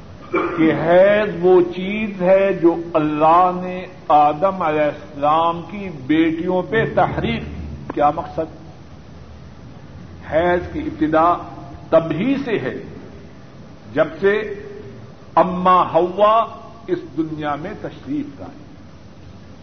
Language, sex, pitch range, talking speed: Urdu, male, 145-190 Hz, 100 wpm